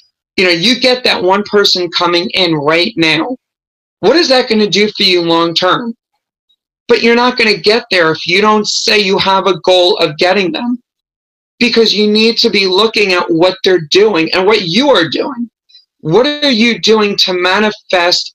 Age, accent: 40-59, American